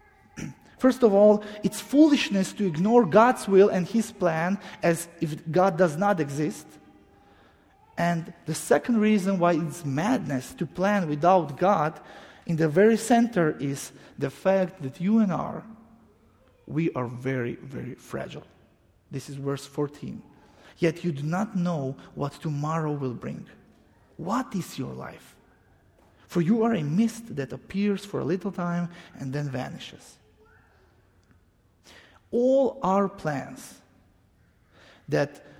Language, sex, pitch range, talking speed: English, male, 130-195 Hz, 135 wpm